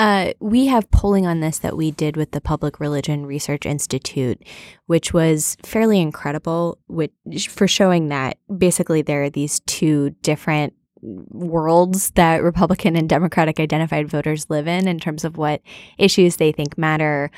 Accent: American